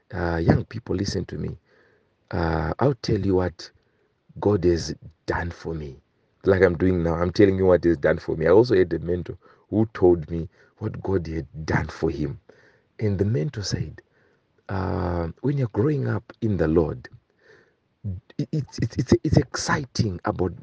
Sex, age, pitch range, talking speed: male, 50-69, 90-120 Hz, 175 wpm